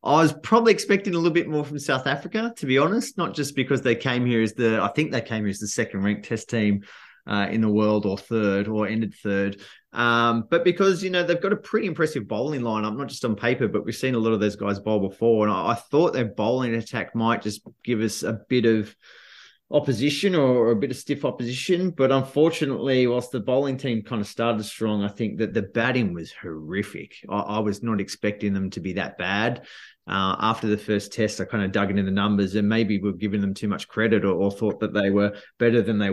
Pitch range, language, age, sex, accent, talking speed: 105-135 Hz, English, 20-39, male, Australian, 240 wpm